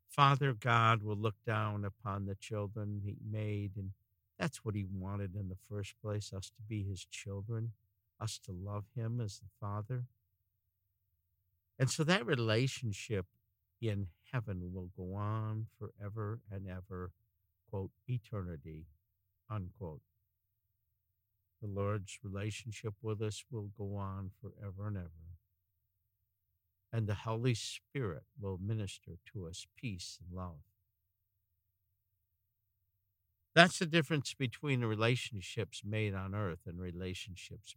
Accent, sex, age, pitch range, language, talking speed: American, male, 60-79, 95-110 Hz, English, 125 wpm